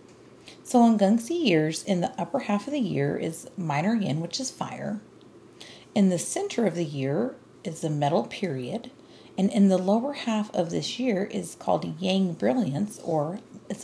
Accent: American